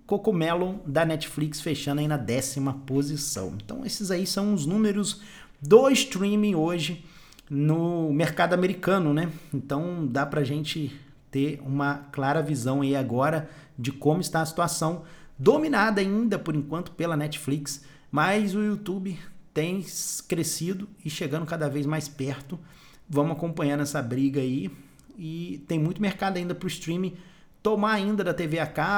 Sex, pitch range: male, 135-170 Hz